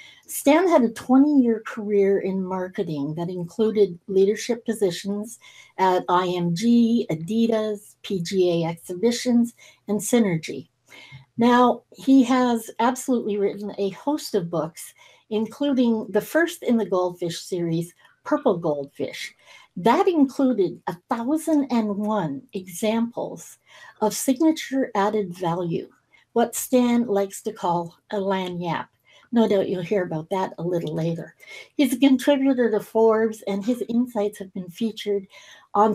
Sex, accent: female, American